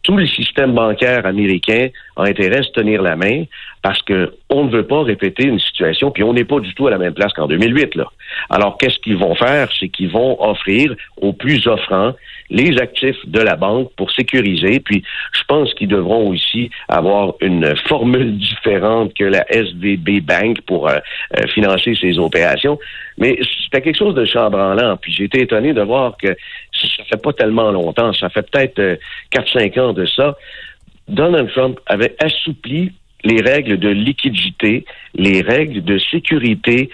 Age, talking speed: 60-79, 175 wpm